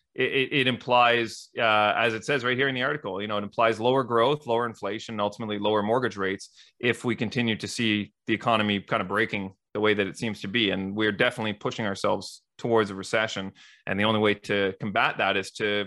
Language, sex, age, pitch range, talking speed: English, male, 30-49, 105-125 Hz, 220 wpm